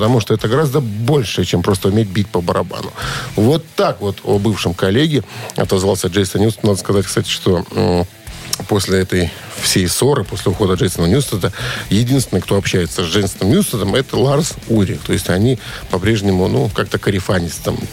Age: 50-69